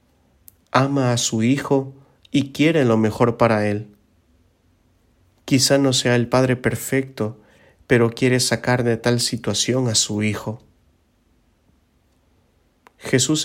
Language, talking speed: English, 115 wpm